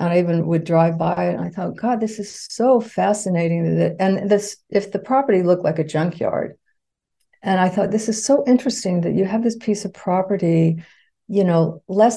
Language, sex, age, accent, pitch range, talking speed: English, female, 50-69, American, 165-210 Hz, 200 wpm